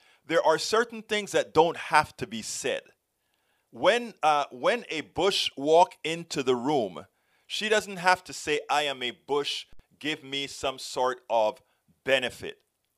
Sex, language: male, English